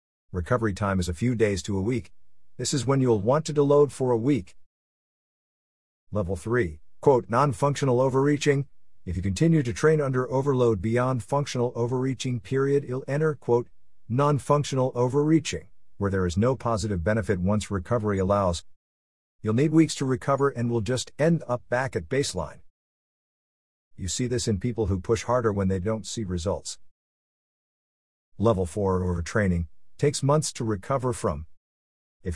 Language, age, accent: English, 50-69, American